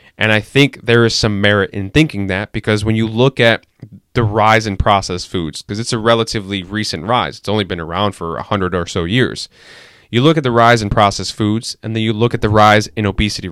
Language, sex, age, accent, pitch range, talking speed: English, male, 20-39, American, 100-120 Hz, 235 wpm